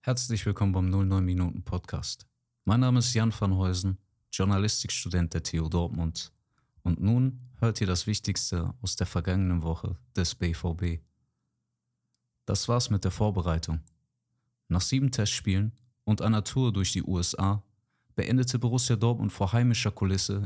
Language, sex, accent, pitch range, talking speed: German, male, German, 95-115 Hz, 140 wpm